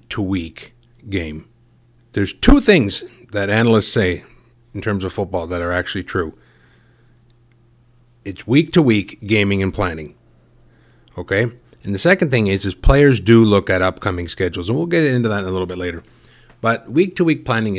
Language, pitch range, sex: English, 95-120 Hz, male